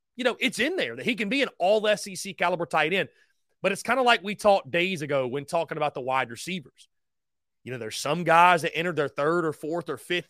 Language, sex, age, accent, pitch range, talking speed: English, male, 30-49, American, 150-200 Hz, 245 wpm